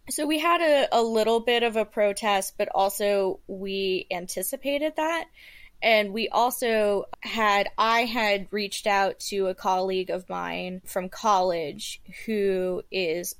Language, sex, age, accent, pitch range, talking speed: English, female, 20-39, American, 185-220 Hz, 145 wpm